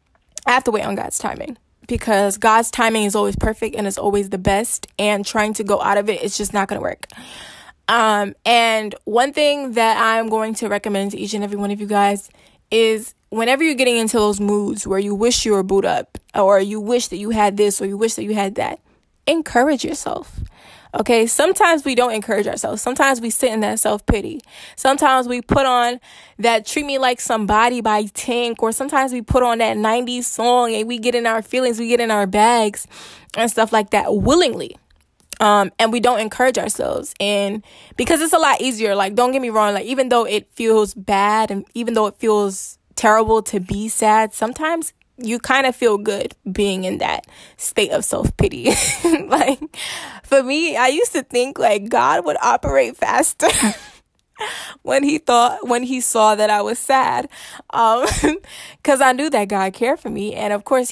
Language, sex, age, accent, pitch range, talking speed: English, female, 20-39, American, 210-255 Hz, 200 wpm